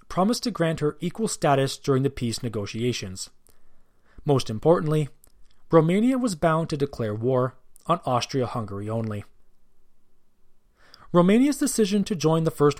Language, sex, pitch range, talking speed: English, male, 115-175 Hz, 125 wpm